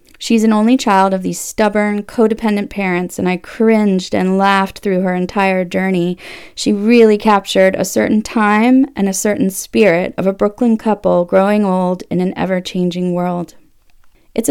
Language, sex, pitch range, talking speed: English, female, 180-230 Hz, 160 wpm